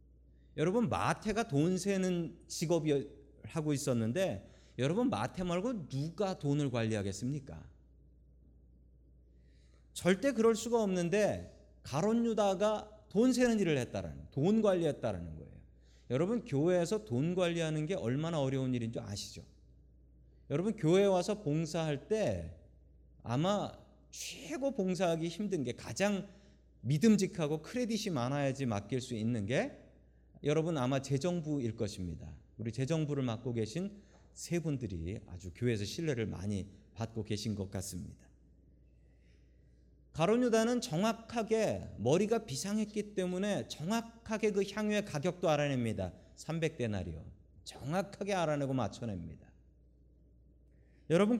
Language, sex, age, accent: Korean, male, 40-59, native